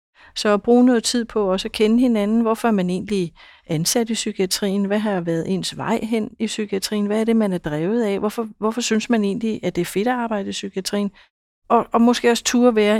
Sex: female